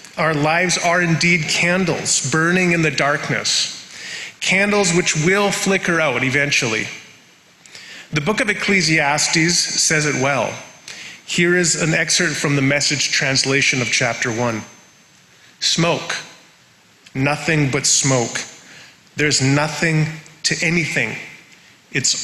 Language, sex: English, male